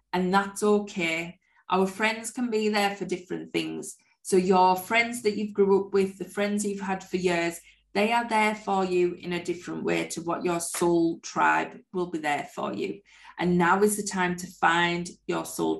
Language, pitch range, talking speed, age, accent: English, 175-205 Hz, 200 wpm, 20-39, British